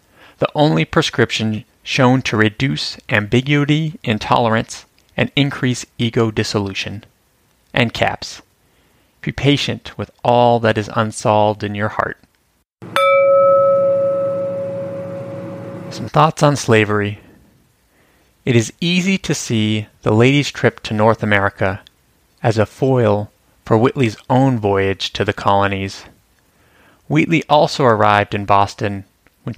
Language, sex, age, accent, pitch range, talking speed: English, male, 30-49, American, 105-130 Hz, 110 wpm